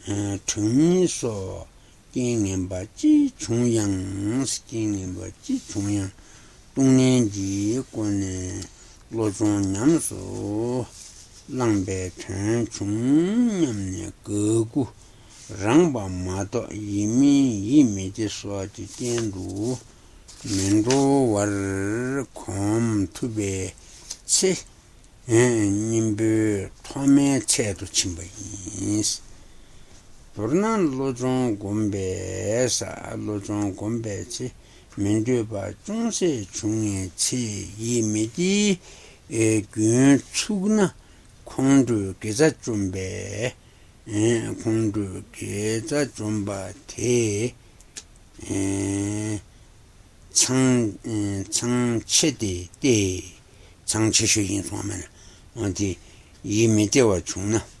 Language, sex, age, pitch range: Italian, male, 60-79, 100-120 Hz